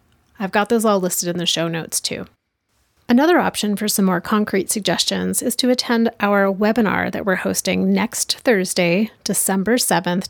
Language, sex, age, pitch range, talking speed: English, female, 30-49, 175-225 Hz, 170 wpm